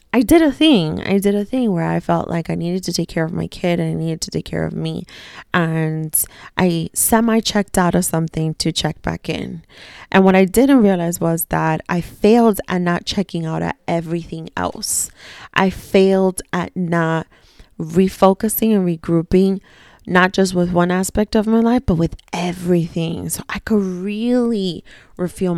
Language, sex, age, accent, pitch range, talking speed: English, female, 30-49, American, 165-200 Hz, 180 wpm